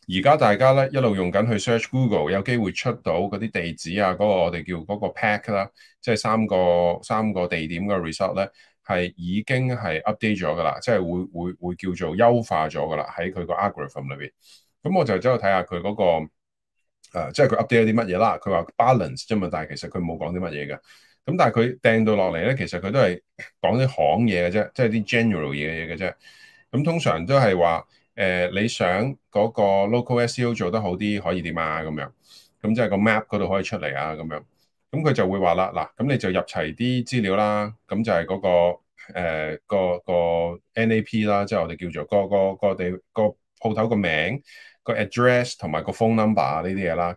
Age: 30-49